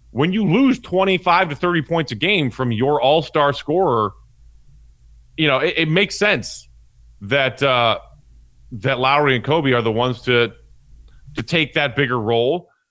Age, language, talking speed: 30-49, English, 160 wpm